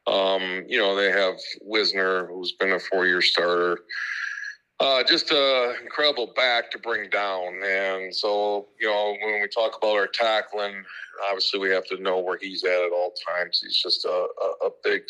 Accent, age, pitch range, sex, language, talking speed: American, 50-69, 95-135 Hz, male, English, 185 wpm